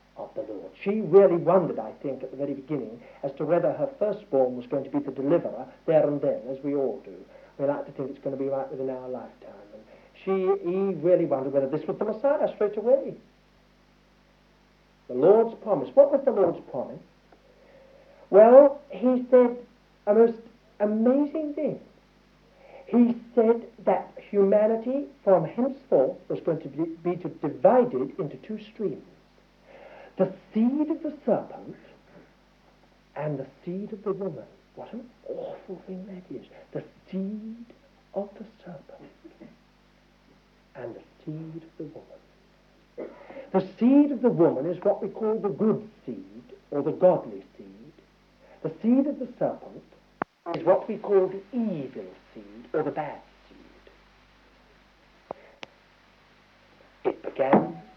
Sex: male